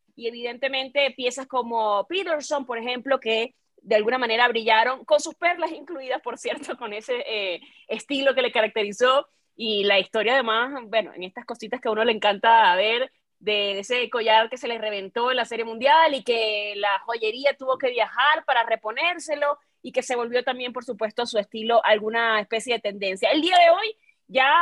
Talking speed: 190 wpm